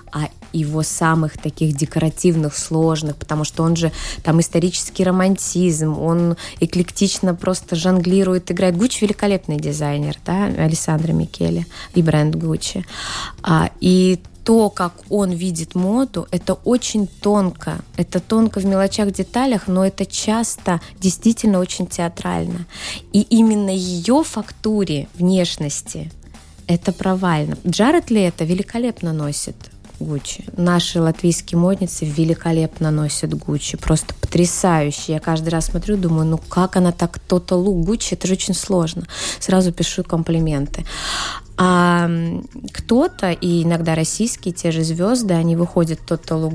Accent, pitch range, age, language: native, 160-190 Hz, 20-39, Russian